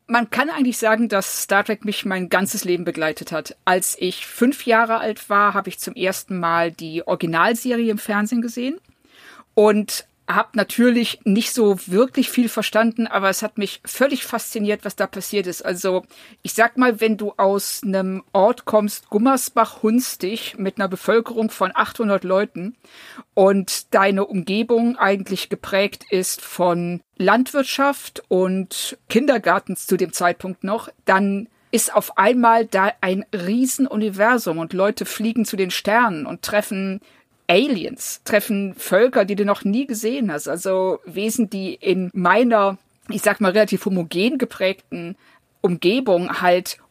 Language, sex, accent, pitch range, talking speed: German, female, German, 190-230 Hz, 150 wpm